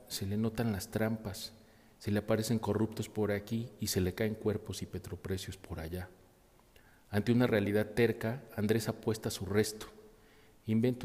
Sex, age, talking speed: male, 40-59, 165 wpm